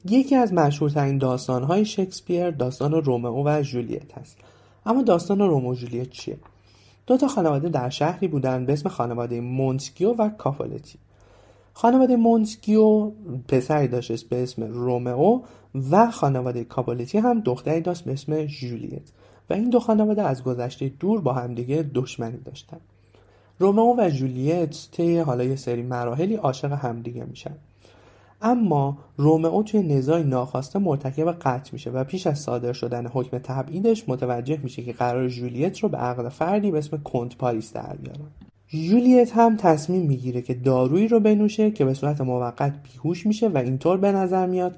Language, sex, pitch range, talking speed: Persian, male, 125-180 Hz, 155 wpm